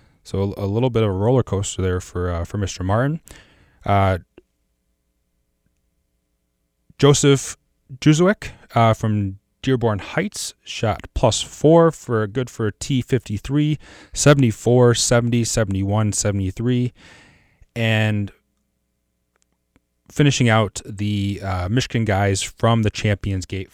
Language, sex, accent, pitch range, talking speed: English, male, American, 95-120 Hz, 115 wpm